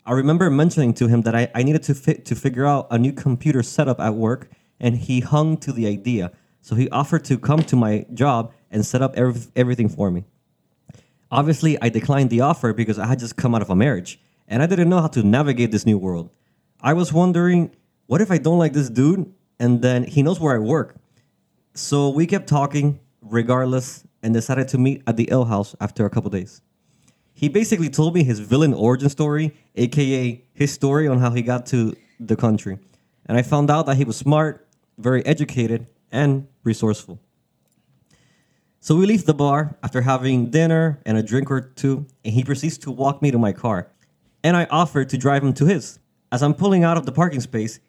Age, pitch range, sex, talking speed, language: 20-39, 120-155 Hz, male, 205 wpm, English